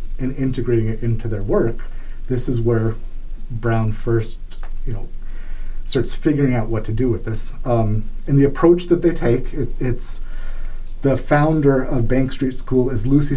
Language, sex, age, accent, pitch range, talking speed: English, male, 40-59, American, 110-130 Hz, 170 wpm